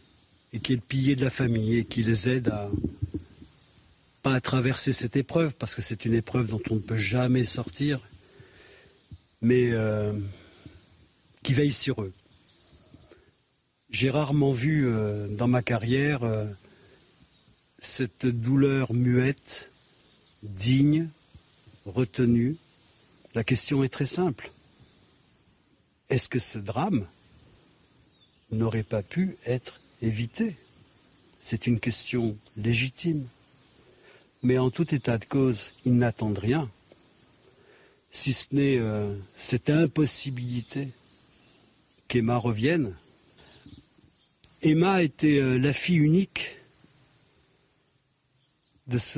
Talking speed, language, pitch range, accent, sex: 110 wpm, French, 115-140 Hz, French, male